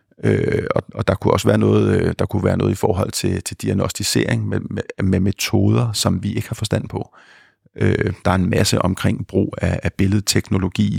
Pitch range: 95-115 Hz